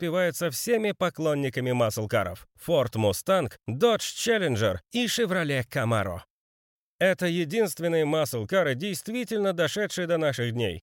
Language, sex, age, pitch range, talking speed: Russian, male, 40-59, 140-205 Hz, 110 wpm